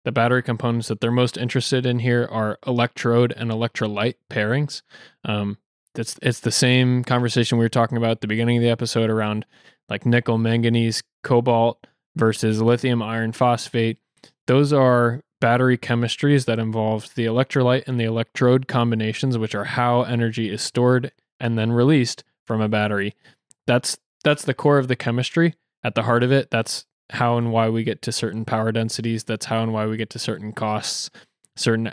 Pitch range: 115-125 Hz